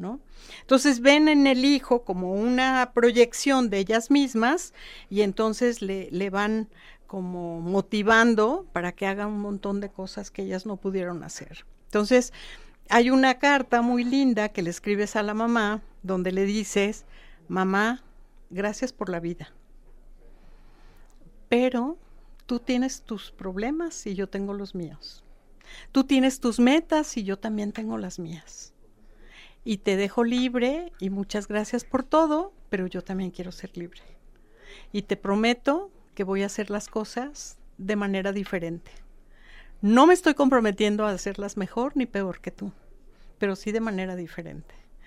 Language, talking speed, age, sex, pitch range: Spanish, 150 wpm, 50-69, female, 195-250 Hz